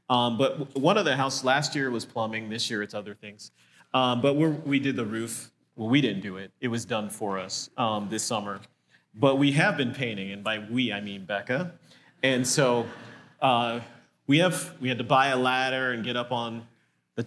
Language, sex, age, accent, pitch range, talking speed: English, male, 30-49, American, 110-140 Hz, 215 wpm